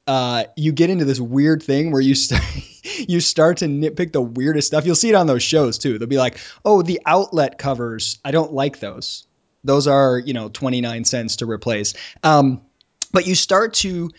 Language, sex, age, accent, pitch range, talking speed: English, male, 20-39, American, 130-165 Hz, 200 wpm